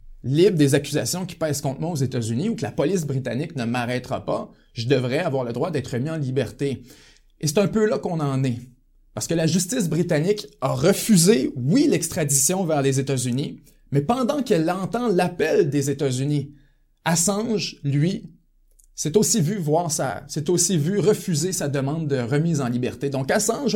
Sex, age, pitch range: male, 30-49, 140-190 Hz